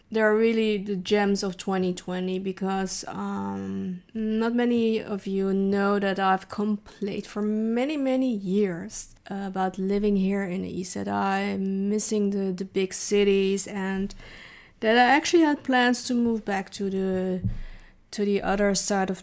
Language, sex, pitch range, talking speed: English, female, 195-225 Hz, 155 wpm